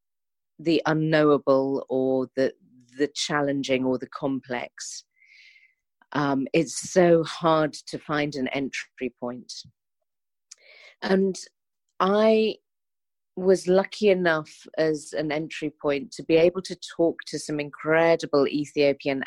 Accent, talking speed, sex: British, 110 wpm, female